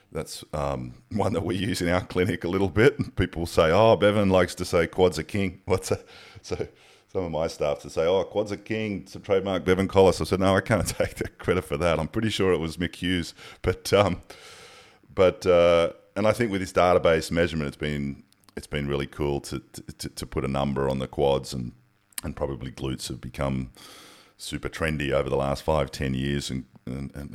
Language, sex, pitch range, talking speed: English, male, 70-90 Hz, 215 wpm